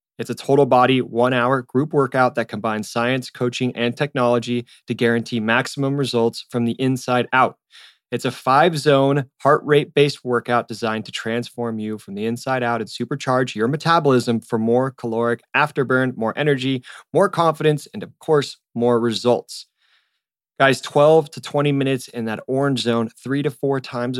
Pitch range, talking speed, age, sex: 115-140 Hz, 160 wpm, 20-39, male